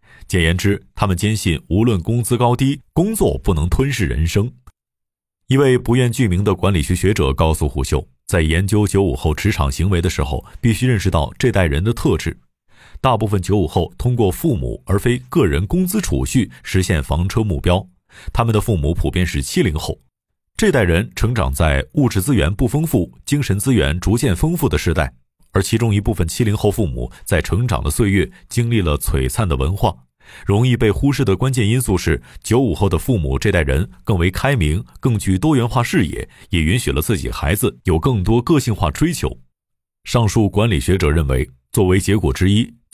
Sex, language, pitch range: male, Chinese, 85-120 Hz